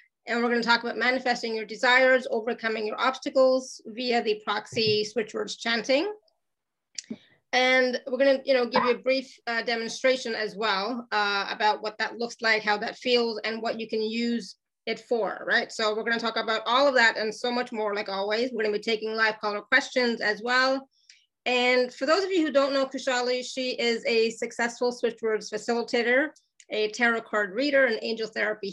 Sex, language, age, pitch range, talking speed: female, English, 30-49, 215-250 Hz, 195 wpm